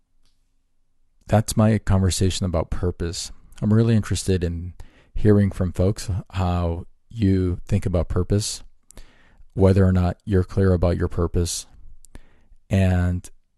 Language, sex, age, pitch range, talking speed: English, male, 40-59, 90-100 Hz, 115 wpm